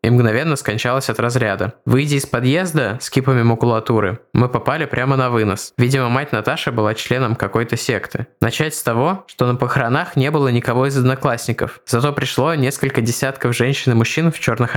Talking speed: 175 wpm